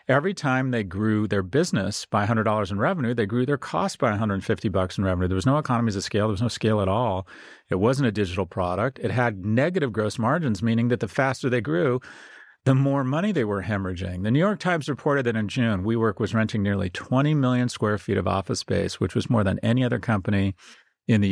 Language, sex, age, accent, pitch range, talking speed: English, male, 40-59, American, 100-125 Hz, 225 wpm